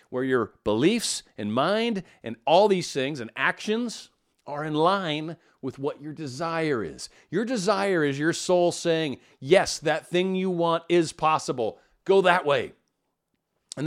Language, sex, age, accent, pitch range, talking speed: English, male, 40-59, American, 140-190 Hz, 155 wpm